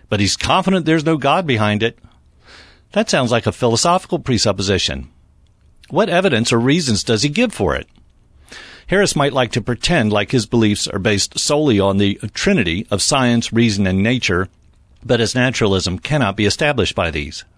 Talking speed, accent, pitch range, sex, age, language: 170 wpm, American, 100-135 Hz, male, 50-69, English